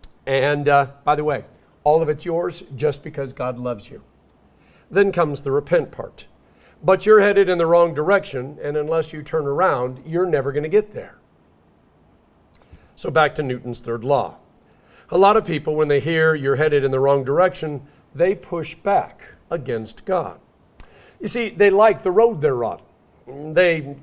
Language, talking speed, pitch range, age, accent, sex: English, 175 wpm, 135-185 Hz, 50-69, American, male